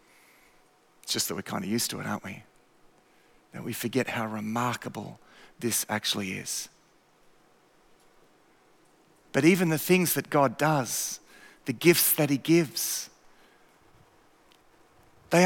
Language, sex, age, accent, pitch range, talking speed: English, male, 40-59, Australian, 155-235 Hz, 125 wpm